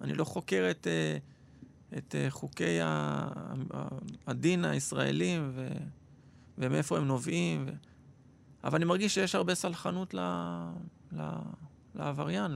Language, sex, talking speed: Hebrew, male, 100 wpm